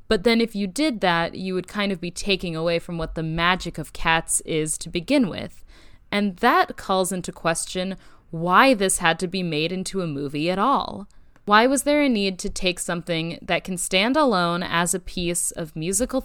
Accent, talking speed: American, 205 wpm